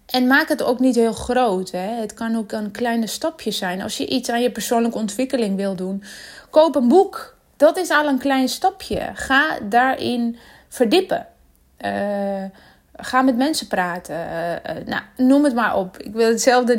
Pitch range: 205-260 Hz